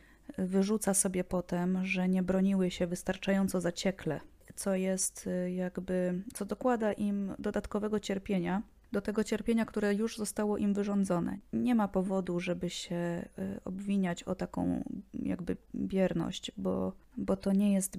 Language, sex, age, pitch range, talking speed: Polish, female, 20-39, 180-210 Hz, 135 wpm